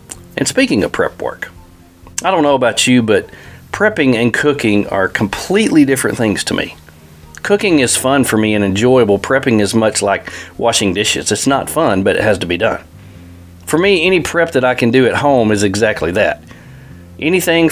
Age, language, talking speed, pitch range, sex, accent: 40-59, English, 190 wpm, 100-135 Hz, male, American